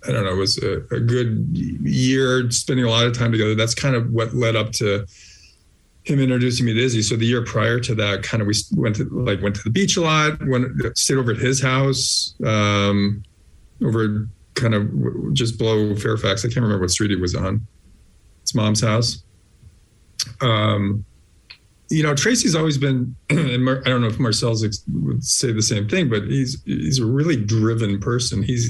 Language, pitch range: English, 105-130 Hz